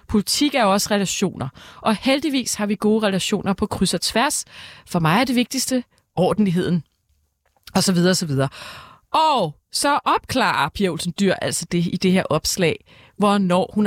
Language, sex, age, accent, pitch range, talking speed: Danish, female, 30-49, native, 160-220 Hz, 175 wpm